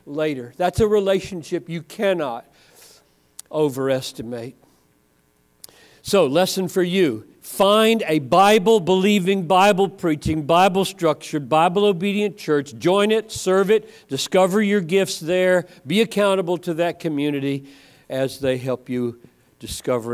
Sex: male